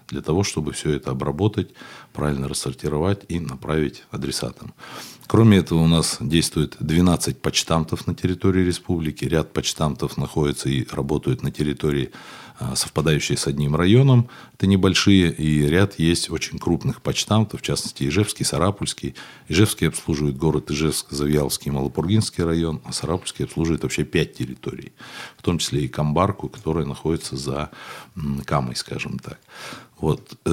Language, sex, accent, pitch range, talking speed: Russian, male, native, 75-95 Hz, 140 wpm